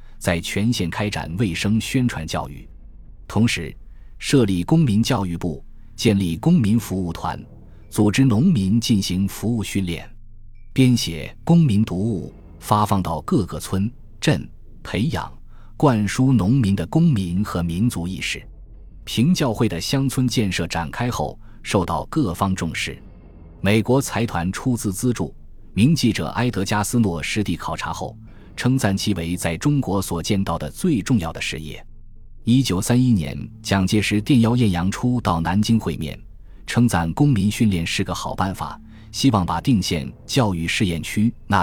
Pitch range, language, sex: 85-115 Hz, Chinese, male